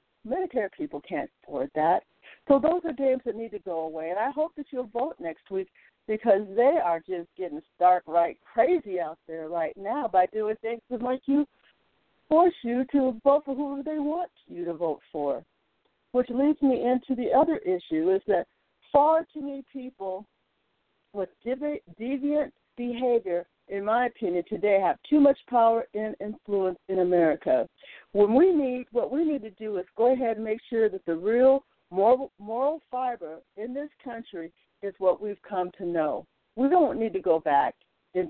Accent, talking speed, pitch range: American, 180 wpm, 185-275 Hz